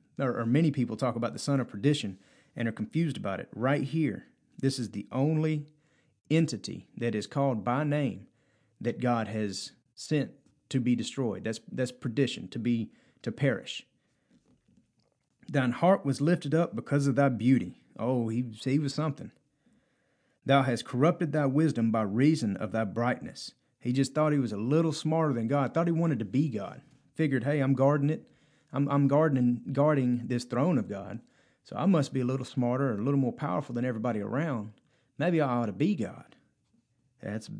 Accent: American